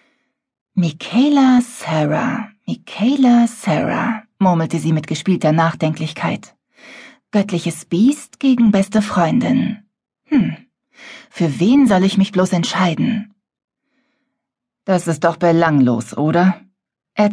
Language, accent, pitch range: German, German, 170-235 Hz